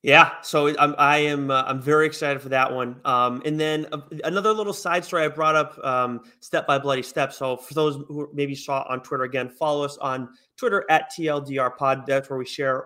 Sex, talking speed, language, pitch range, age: male, 220 wpm, English, 125-150 Hz, 30-49